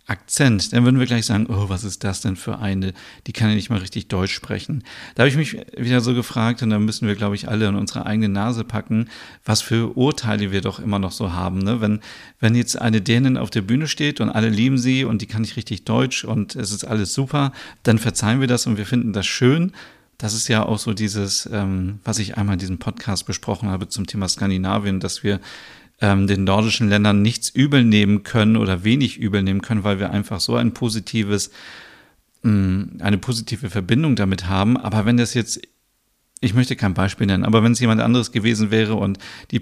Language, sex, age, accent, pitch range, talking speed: German, male, 40-59, German, 100-120 Hz, 215 wpm